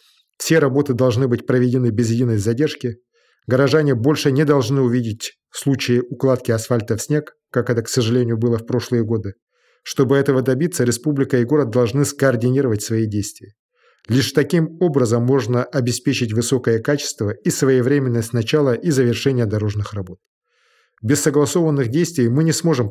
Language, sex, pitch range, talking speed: Russian, male, 115-145 Hz, 150 wpm